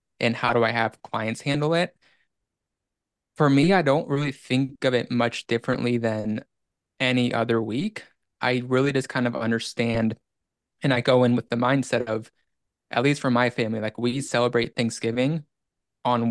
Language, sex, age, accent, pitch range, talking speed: English, male, 20-39, American, 115-125 Hz, 170 wpm